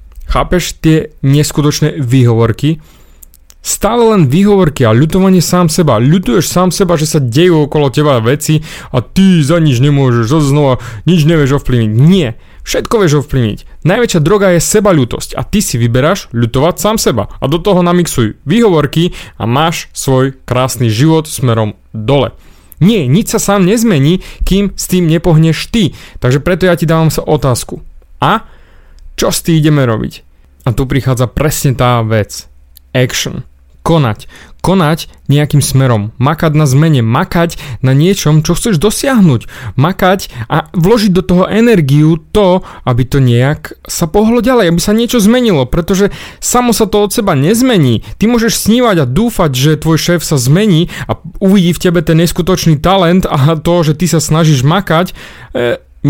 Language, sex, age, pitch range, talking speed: Slovak, male, 30-49, 125-180 Hz, 160 wpm